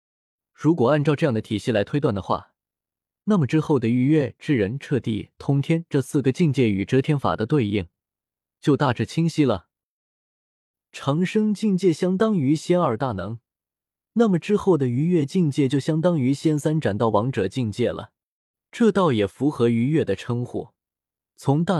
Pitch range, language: 110-160 Hz, Chinese